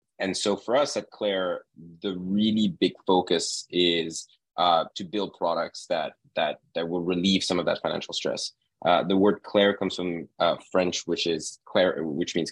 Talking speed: 180 wpm